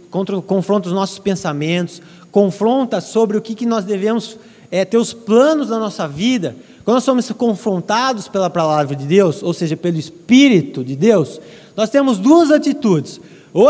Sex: male